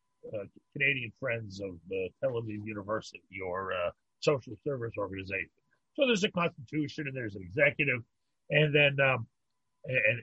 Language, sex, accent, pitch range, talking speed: English, male, American, 130-175 Hz, 145 wpm